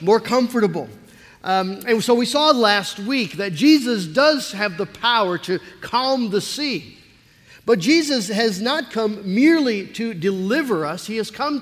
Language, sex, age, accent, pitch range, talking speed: English, male, 50-69, American, 185-240 Hz, 160 wpm